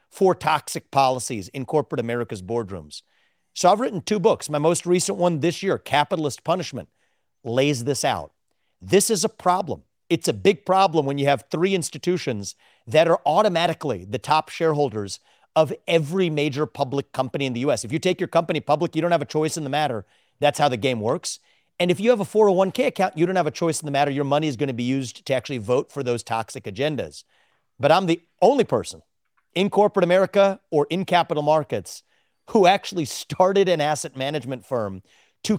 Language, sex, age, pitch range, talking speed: English, male, 40-59, 135-180 Hz, 195 wpm